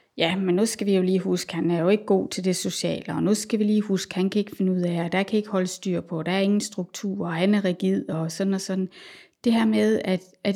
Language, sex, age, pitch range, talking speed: Danish, female, 30-49, 175-205 Hz, 305 wpm